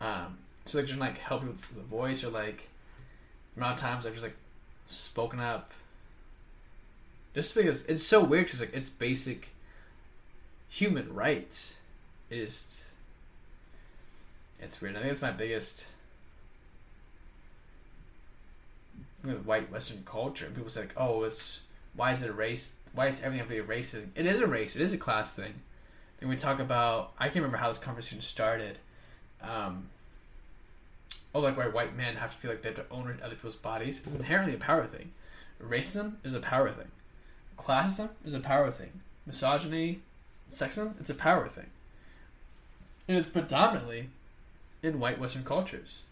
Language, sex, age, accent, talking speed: English, male, 20-39, American, 160 wpm